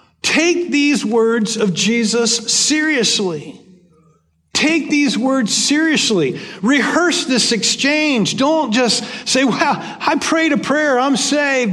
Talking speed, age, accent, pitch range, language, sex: 120 wpm, 50-69, American, 200-265 Hz, English, male